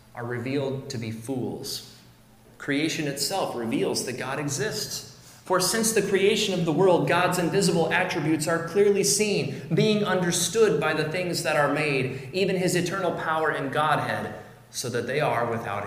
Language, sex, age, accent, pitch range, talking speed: English, male, 30-49, American, 115-150 Hz, 165 wpm